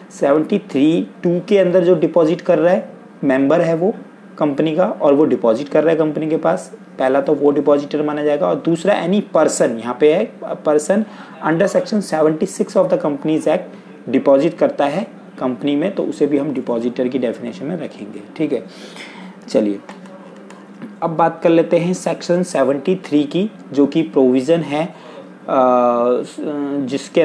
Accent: native